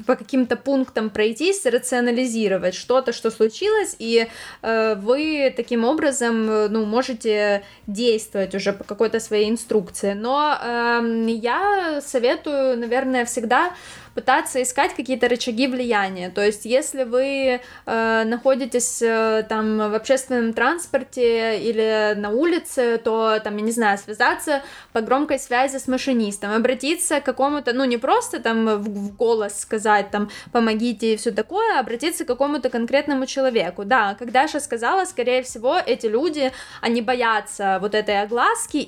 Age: 10-29